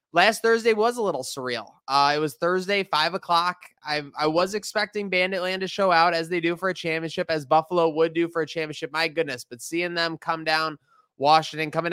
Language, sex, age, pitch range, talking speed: English, male, 20-39, 140-170 Hz, 205 wpm